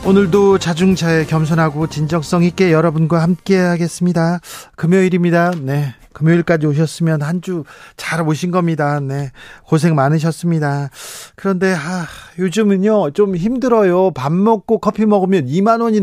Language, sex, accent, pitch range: Korean, male, native, 155-190 Hz